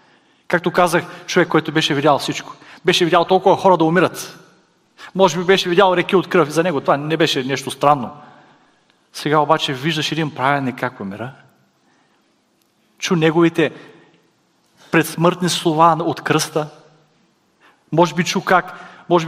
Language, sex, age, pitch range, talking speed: Bulgarian, male, 30-49, 150-180 Hz, 140 wpm